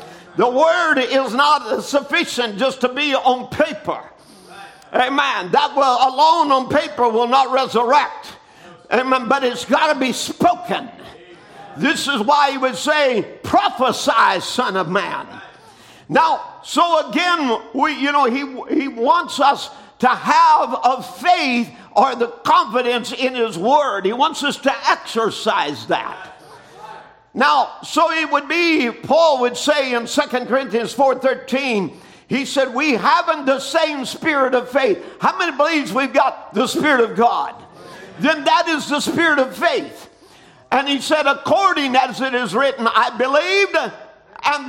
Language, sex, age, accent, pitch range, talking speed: English, male, 50-69, American, 255-315 Hz, 150 wpm